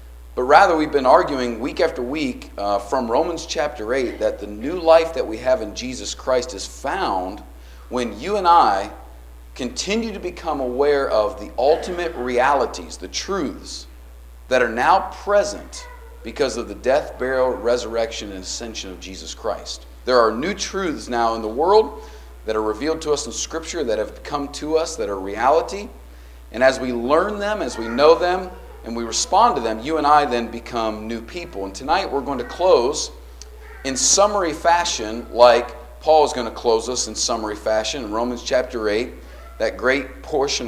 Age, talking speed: 40-59, 185 wpm